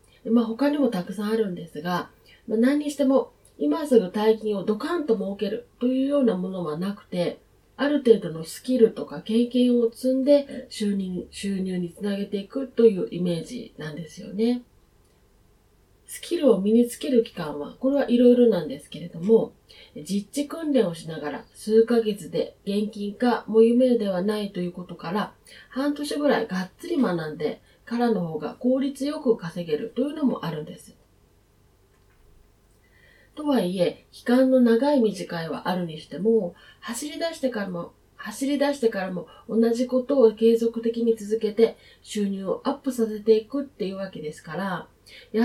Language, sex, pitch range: Japanese, female, 185-250 Hz